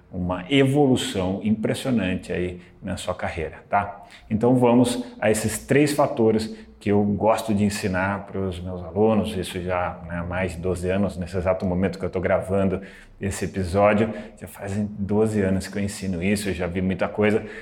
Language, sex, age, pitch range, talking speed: Portuguese, male, 30-49, 95-115 Hz, 175 wpm